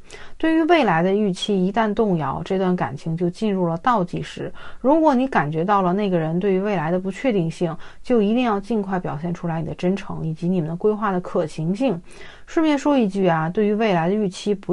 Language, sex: Chinese, female